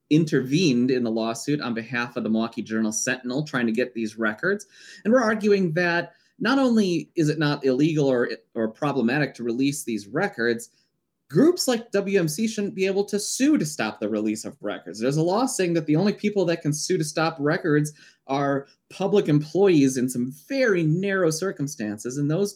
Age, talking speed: 20-39, 190 wpm